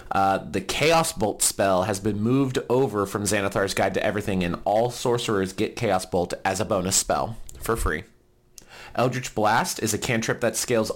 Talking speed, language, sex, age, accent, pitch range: 180 wpm, English, male, 30-49, American, 95-120 Hz